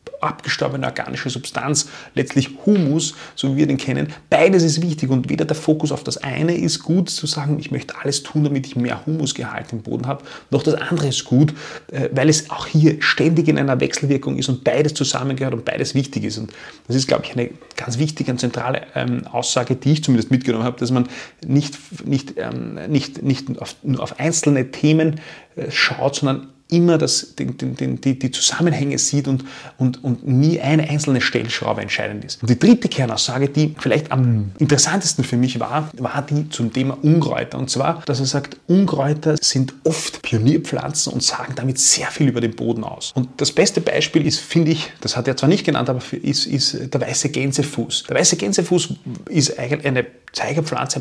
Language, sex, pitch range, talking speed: German, male, 130-155 Hz, 185 wpm